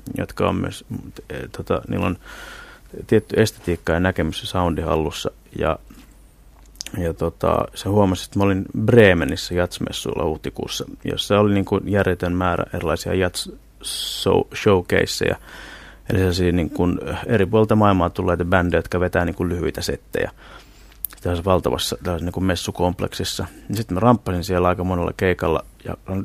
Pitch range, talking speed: 90-105 Hz, 140 wpm